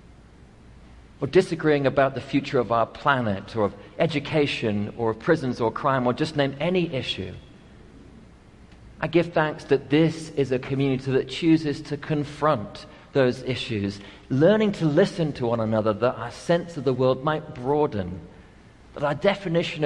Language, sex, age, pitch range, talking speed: English, male, 40-59, 125-155 Hz, 155 wpm